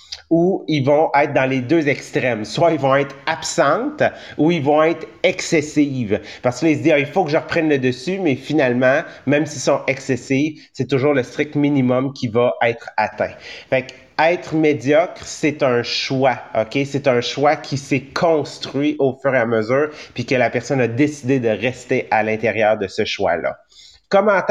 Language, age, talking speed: English, 30-49, 190 wpm